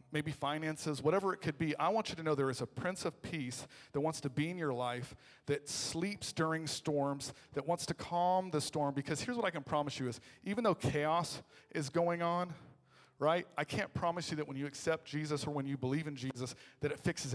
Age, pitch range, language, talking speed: 40-59, 130-160 Hz, English, 230 wpm